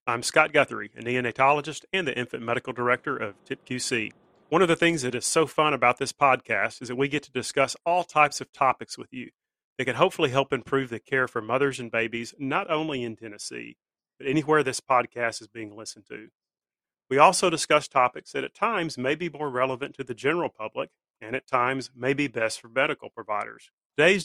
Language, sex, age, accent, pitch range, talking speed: English, male, 40-59, American, 120-140 Hz, 205 wpm